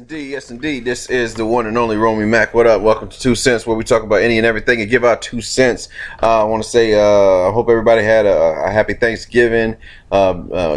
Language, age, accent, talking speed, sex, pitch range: English, 30-49, American, 245 wpm, male, 100-115 Hz